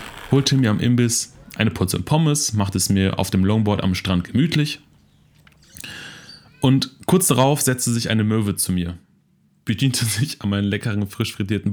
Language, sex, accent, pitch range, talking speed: German, male, German, 105-145 Hz, 165 wpm